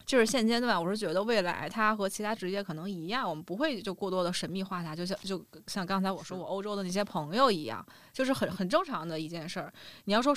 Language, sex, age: Chinese, female, 20-39